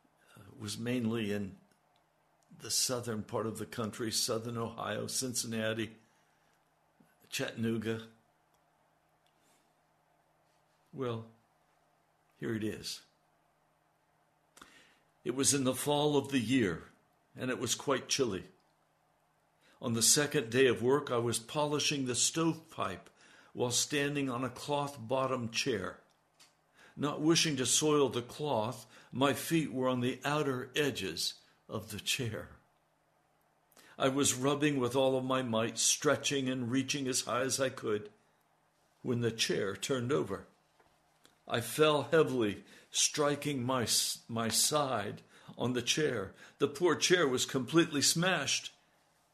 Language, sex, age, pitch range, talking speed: English, male, 60-79, 115-140 Hz, 125 wpm